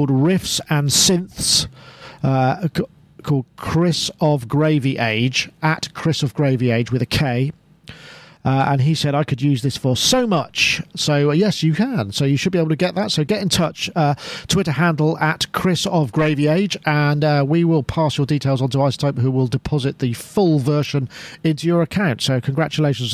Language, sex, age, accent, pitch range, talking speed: English, male, 40-59, British, 135-170 Hz, 195 wpm